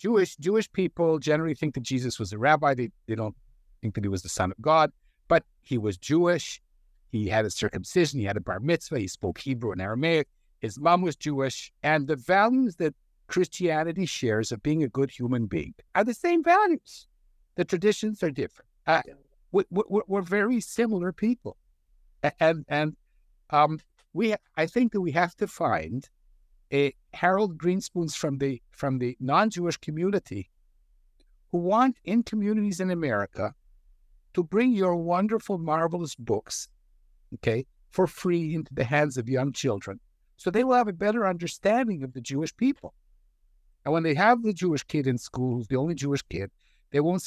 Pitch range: 125-185 Hz